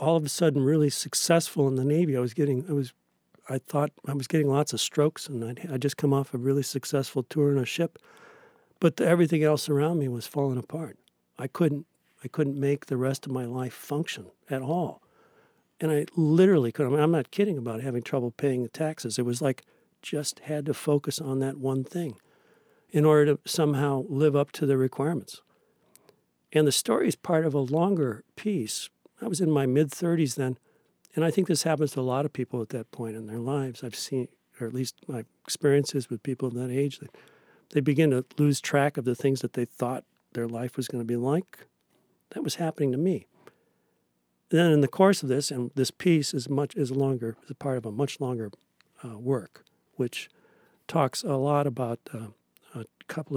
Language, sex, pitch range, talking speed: English, male, 125-150 Hz, 210 wpm